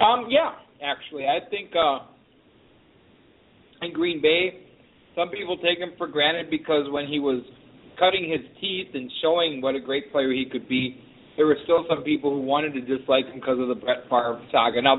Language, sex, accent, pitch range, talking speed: English, male, American, 130-170 Hz, 190 wpm